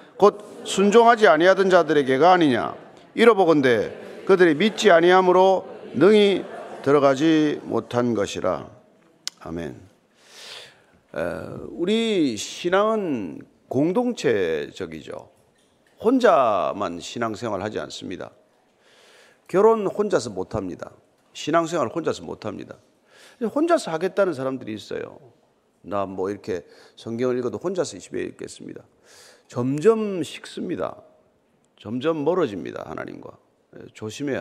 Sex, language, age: male, Korean, 40-59